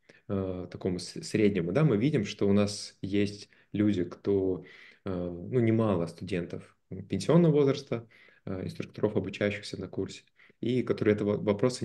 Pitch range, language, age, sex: 95-110 Hz, Russian, 20-39, male